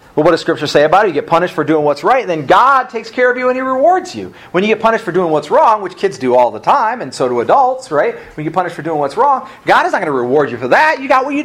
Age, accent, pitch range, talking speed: 40-59, American, 155-255 Hz, 340 wpm